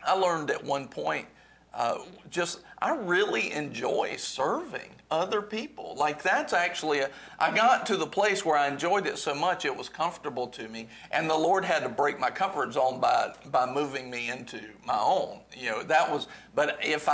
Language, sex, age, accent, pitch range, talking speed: English, male, 50-69, American, 130-170 Hz, 195 wpm